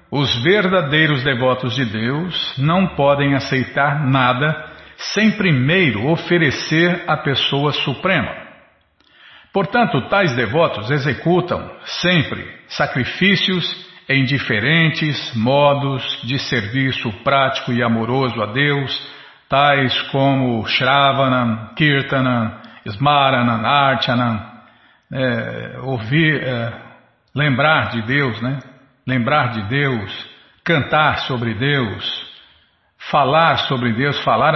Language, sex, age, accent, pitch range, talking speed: Portuguese, male, 50-69, Brazilian, 125-160 Hz, 95 wpm